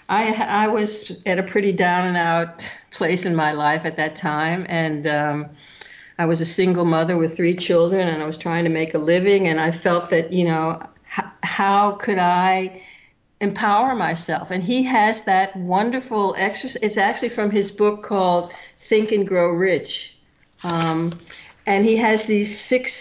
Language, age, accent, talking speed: English, 50-69, American, 175 wpm